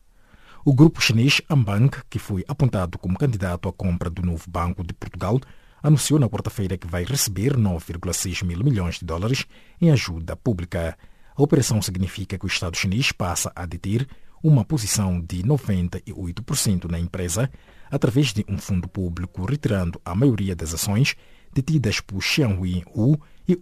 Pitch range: 90-125 Hz